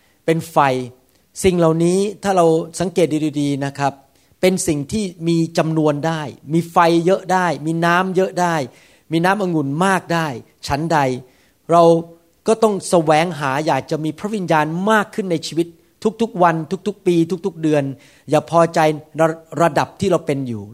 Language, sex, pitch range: Thai, male, 135-170 Hz